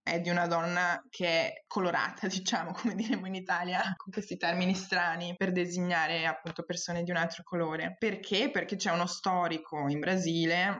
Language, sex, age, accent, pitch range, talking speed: Italian, female, 20-39, native, 165-185 Hz, 170 wpm